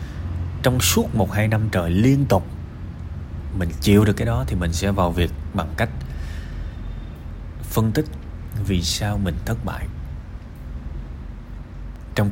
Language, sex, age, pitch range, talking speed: Vietnamese, male, 20-39, 80-120 Hz, 130 wpm